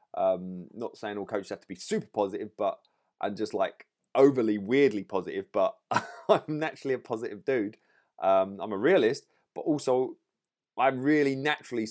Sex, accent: male, British